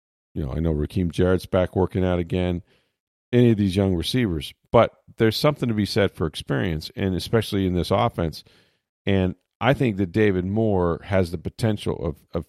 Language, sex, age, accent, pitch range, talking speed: English, male, 40-59, American, 85-105 Hz, 185 wpm